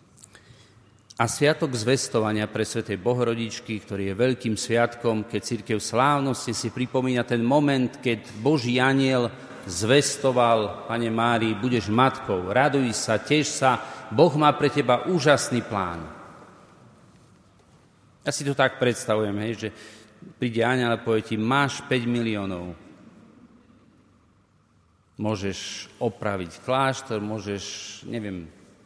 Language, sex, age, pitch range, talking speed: Slovak, male, 40-59, 110-135 Hz, 115 wpm